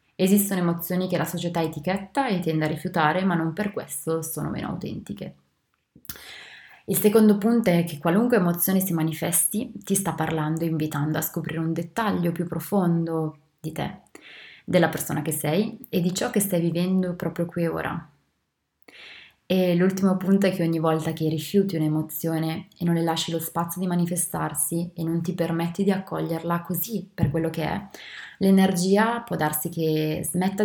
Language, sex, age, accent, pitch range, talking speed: Italian, female, 20-39, native, 160-190 Hz, 170 wpm